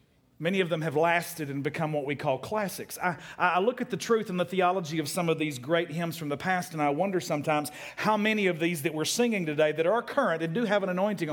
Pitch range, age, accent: 160-205 Hz, 50-69, American